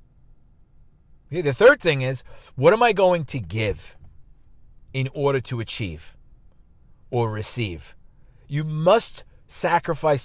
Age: 40-59